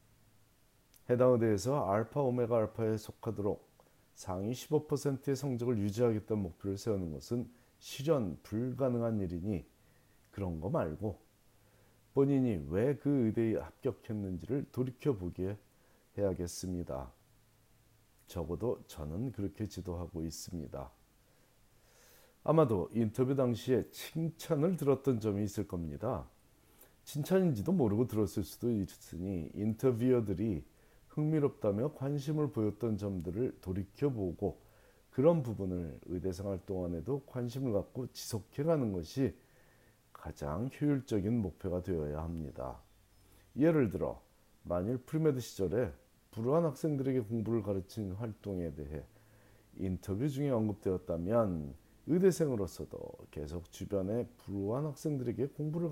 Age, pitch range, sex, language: 40-59, 95-130 Hz, male, Korean